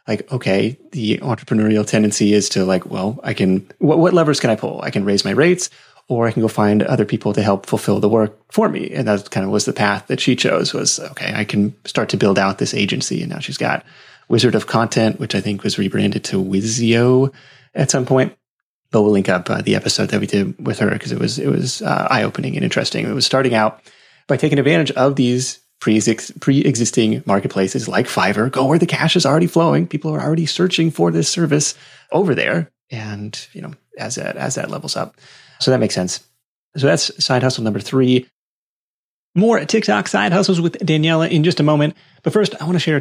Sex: male